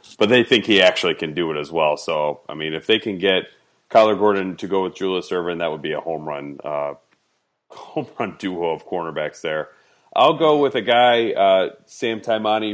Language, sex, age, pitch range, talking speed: English, male, 30-49, 85-105 Hz, 210 wpm